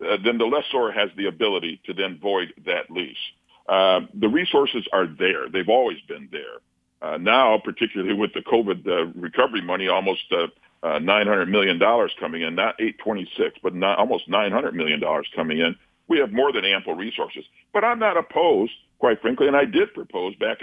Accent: American